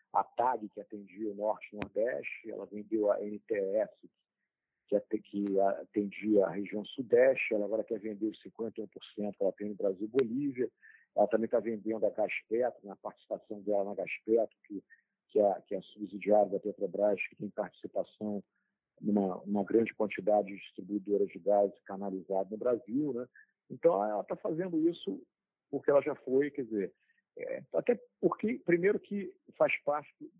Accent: Brazilian